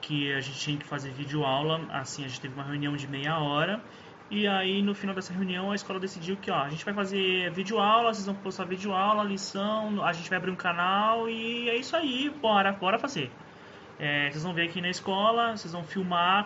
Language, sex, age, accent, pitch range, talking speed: Portuguese, male, 20-39, Brazilian, 155-205 Hz, 210 wpm